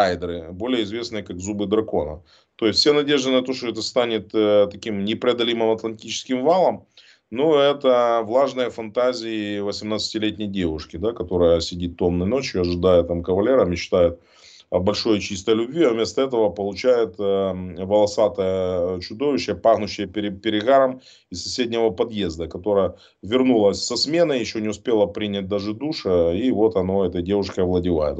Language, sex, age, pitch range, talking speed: Russian, male, 30-49, 95-120 Hz, 145 wpm